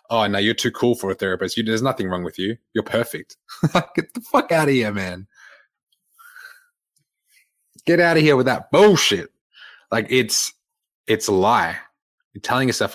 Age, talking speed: 20-39, 170 wpm